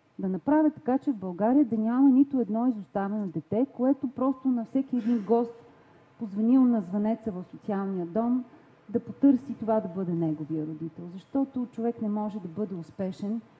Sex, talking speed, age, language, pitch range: female, 170 wpm, 40-59, Bulgarian, 185-250 Hz